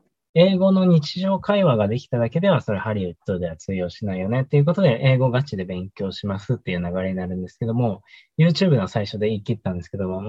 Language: Japanese